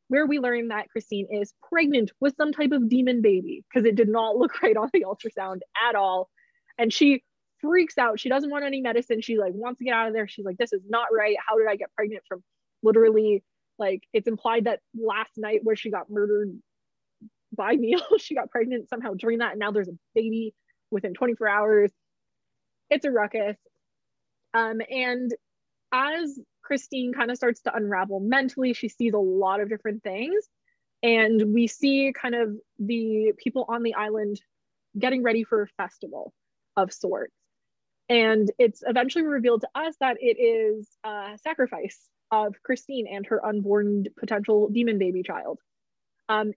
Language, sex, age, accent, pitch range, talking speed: English, female, 20-39, American, 210-255 Hz, 180 wpm